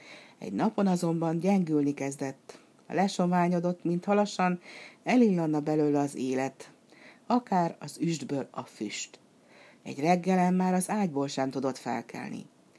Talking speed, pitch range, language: 120 wpm, 145-195 Hz, Hungarian